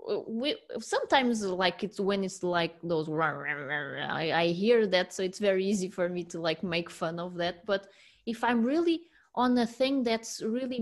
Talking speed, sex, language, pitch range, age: 205 wpm, female, English, 175-225 Hz, 20-39